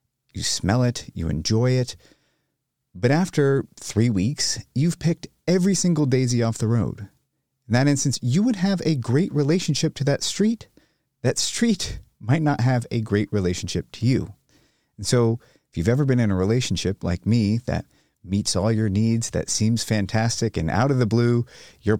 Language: English